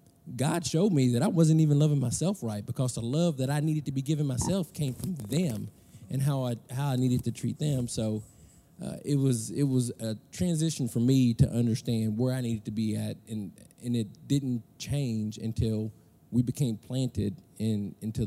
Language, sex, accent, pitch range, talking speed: English, male, American, 110-140 Hz, 200 wpm